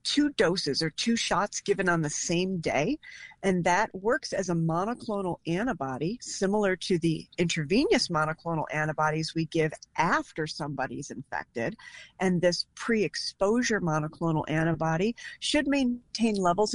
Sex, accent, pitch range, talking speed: female, American, 160-205 Hz, 135 wpm